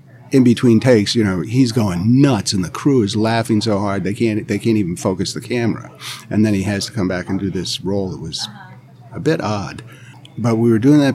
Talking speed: 235 wpm